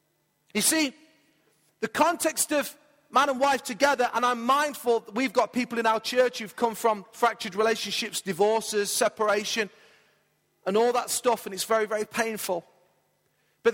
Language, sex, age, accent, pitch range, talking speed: English, male, 40-59, British, 215-260 Hz, 155 wpm